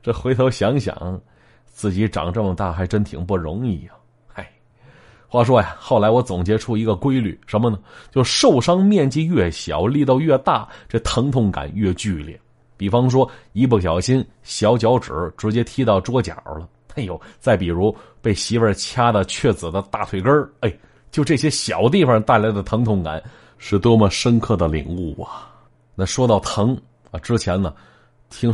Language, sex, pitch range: Chinese, male, 95-130 Hz